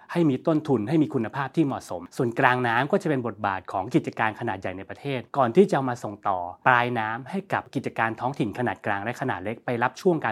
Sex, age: male, 20-39